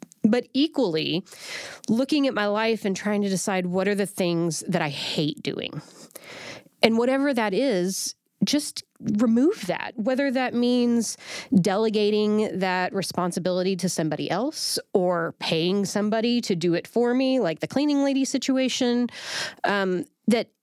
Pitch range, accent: 175-230 Hz, American